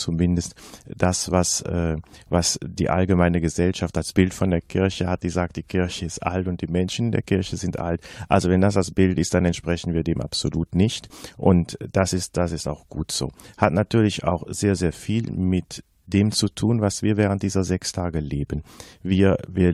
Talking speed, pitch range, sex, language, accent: 200 wpm, 85-100 Hz, male, German, German